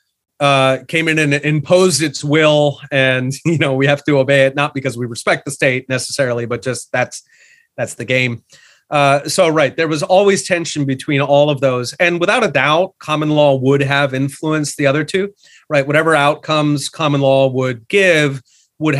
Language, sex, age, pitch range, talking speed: English, male, 30-49, 130-155 Hz, 185 wpm